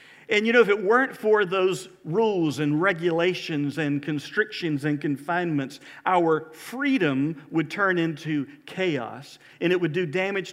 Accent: American